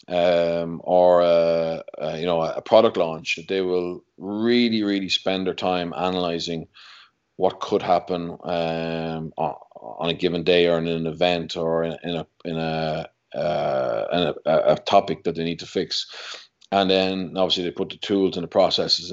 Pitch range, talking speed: 85-95 Hz, 175 wpm